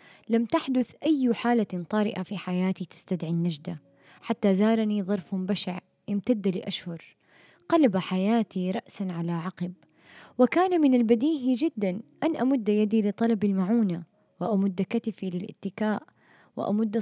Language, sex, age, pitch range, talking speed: Arabic, female, 20-39, 180-220 Hz, 115 wpm